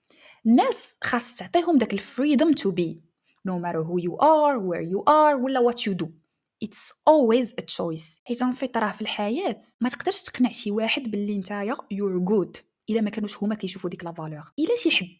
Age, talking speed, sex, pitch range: 20-39, 195 wpm, female, 190-250 Hz